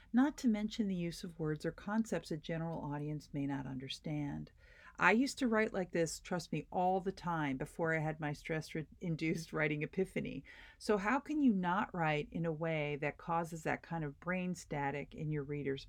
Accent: American